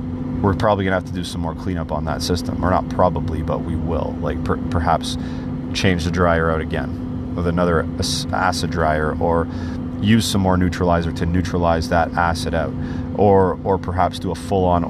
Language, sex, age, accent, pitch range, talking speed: English, male, 30-49, American, 85-100 Hz, 190 wpm